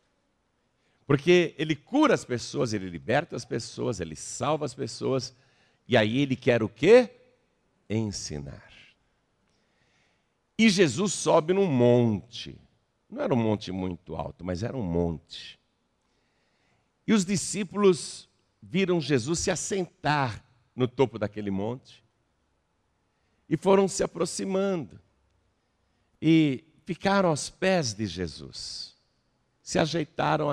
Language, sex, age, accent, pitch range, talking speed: Portuguese, male, 60-79, Brazilian, 100-165 Hz, 115 wpm